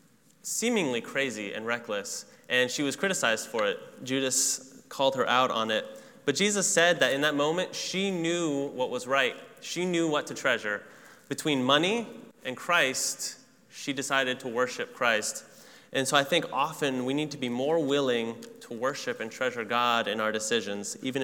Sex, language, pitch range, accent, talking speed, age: male, English, 125-170 Hz, American, 175 wpm, 20-39